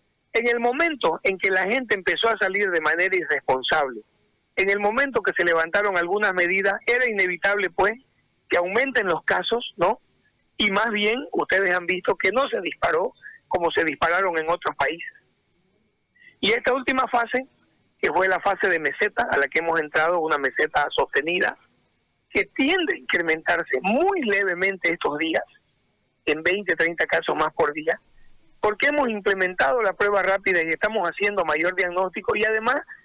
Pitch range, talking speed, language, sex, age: 185-235 Hz, 165 wpm, Spanish, male, 50-69